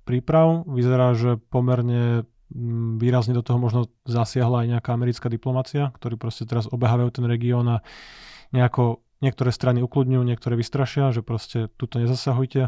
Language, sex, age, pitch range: Slovak, male, 20-39, 120-130 Hz